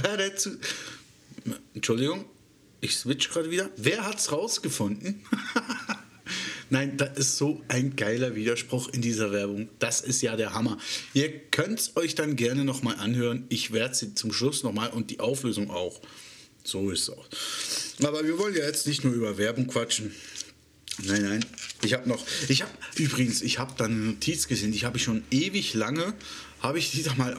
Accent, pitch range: German, 110-155 Hz